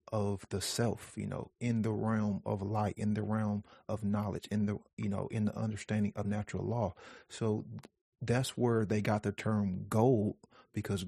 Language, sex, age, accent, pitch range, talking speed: English, male, 40-59, American, 100-110 Hz, 185 wpm